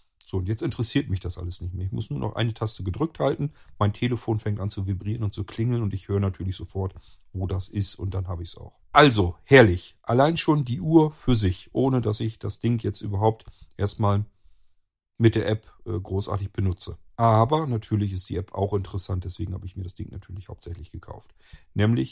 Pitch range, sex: 95-120 Hz, male